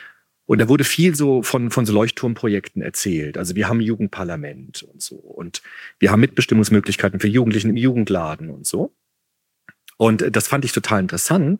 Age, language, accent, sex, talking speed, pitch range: 40-59, German, German, male, 165 wpm, 110-150 Hz